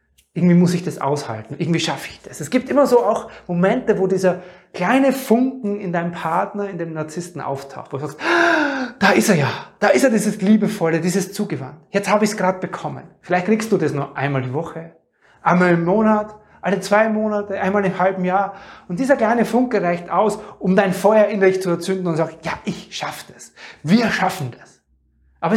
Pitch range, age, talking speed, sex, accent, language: 160-215 Hz, 30-49, 210 wpm, male, German, German